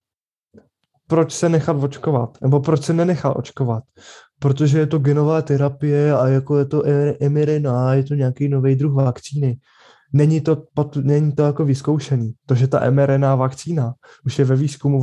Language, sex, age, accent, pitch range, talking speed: Czech, male, 20-39, native, 130-150 Hz, 160 wpm